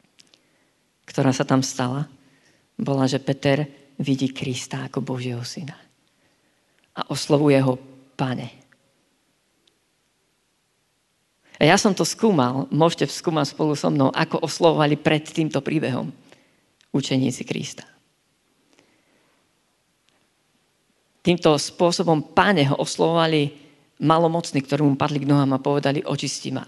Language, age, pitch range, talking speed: Slovak, 40-59, 140-165 Hz, 110 wpm